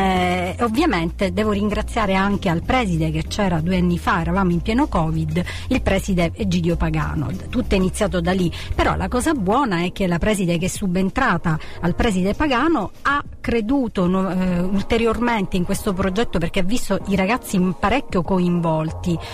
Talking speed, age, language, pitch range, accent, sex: 165 wpm, 40-59, Italian, 180-220 Hz, native, female